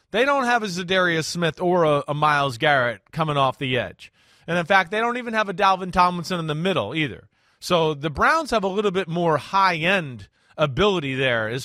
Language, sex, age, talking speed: English, male, 30-49, 210 wpm